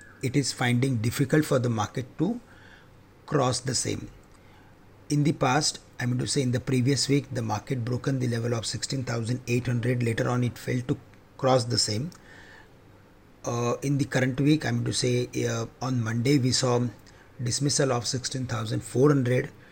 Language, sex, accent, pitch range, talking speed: English, male, Indian, 120-140 Hz, 175 wpm